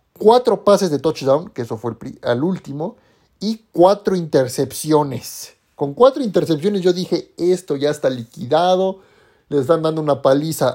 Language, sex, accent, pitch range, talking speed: Spanish, male, Mexican, 145-200 Hz, 150 wpm